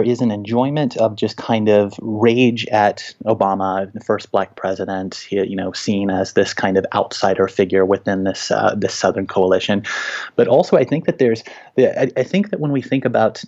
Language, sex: English, male